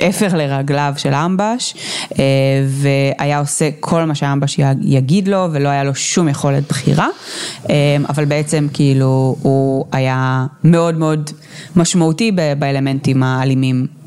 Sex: female